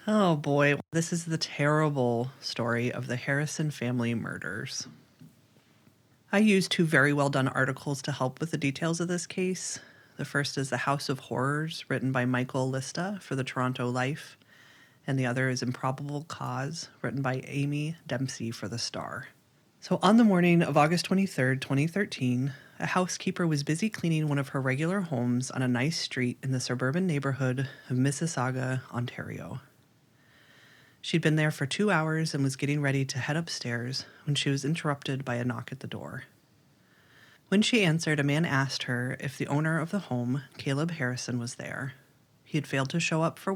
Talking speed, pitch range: 180 wpm, 130-155 Hz